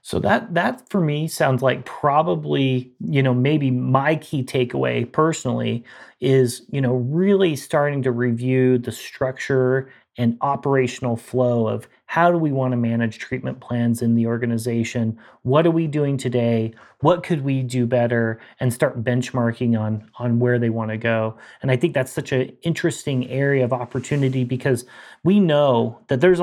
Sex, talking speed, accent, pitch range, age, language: male, 170 wpm, American, 120-150 Hz, 30-49, English